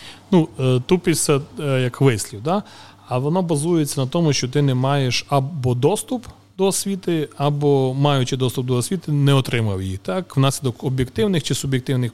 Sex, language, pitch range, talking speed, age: male, Ukrainian, 120-150 Hz, 150 wpm, 30-49